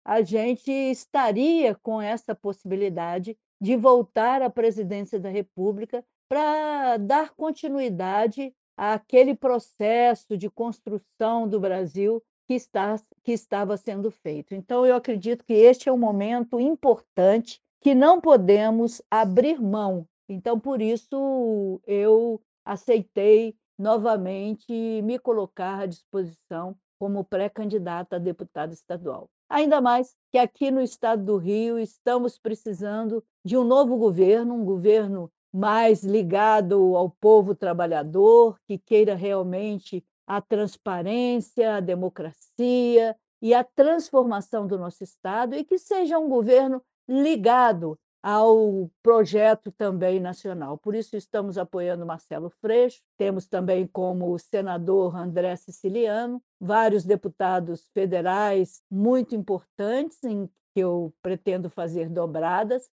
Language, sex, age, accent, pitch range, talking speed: Portuguese, female, 50-69, Brazilian, 190-240 Hz, 115 wpm